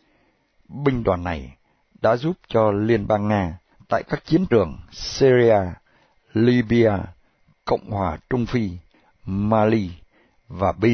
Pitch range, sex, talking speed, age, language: 95-125 Hz, male, 120 wpm, 60-79, Vietnamese